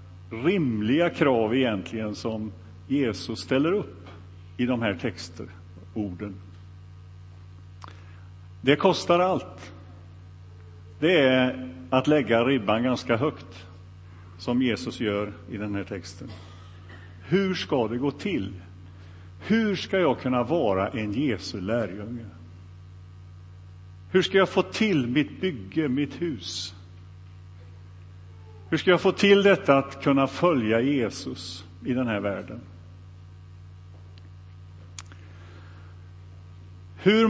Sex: male